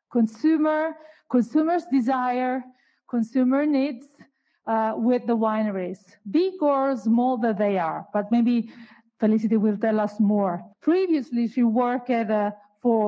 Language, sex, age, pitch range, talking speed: English, female, 40-59, 215-275 Hz, 130 wpm